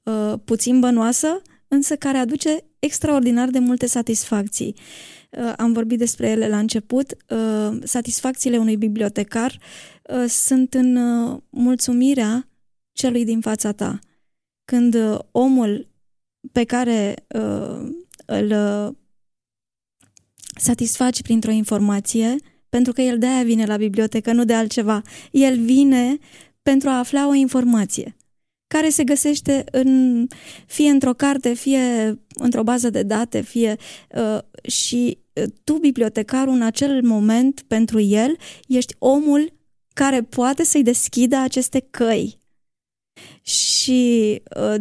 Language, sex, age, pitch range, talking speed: Romanian, female, 20-39, 225-265 Hz, 110 wpm